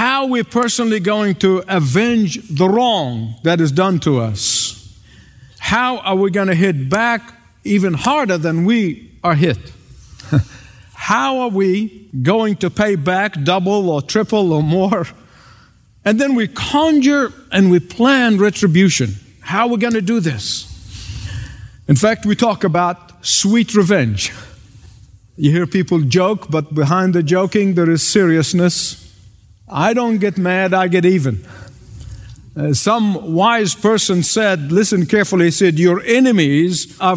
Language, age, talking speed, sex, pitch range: English, 50-69, 145 wpm, male, 145-210 Hz